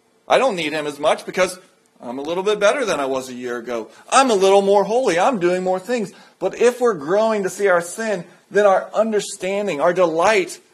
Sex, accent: male, American